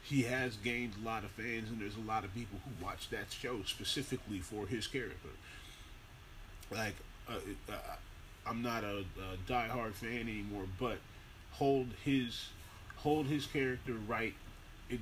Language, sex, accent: English, male, American